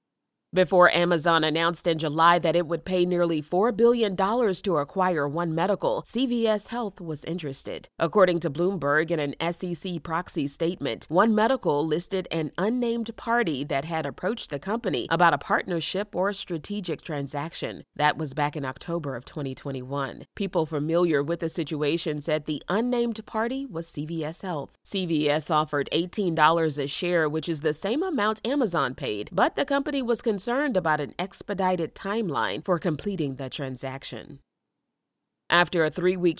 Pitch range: 155-200 Hz